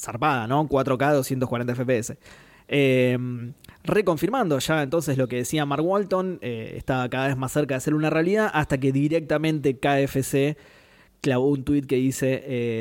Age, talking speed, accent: 20-39, 160 wpm, Argentinian